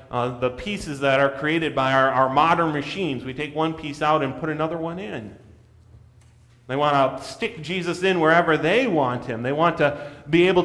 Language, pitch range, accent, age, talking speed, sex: English, 110-145 Hz, American, 30-49, 205 wpm, male